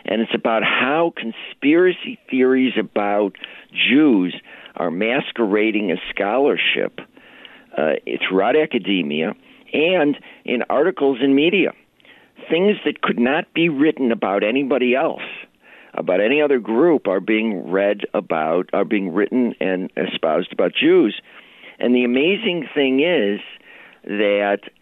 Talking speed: 120 wpm